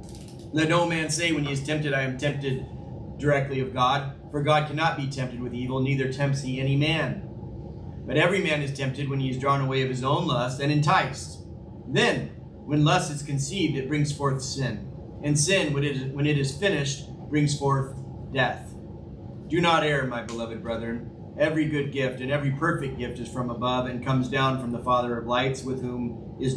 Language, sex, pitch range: English, male, 125-150 Hz